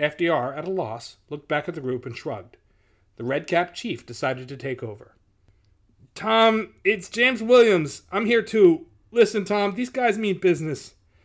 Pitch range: 110-150 Hz